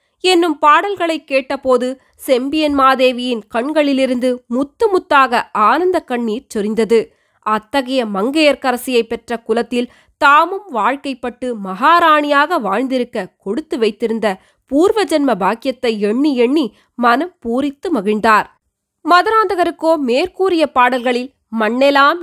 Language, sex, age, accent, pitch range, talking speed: Tamil, female, 20-39, native, 230-310 Hz, 85 wpm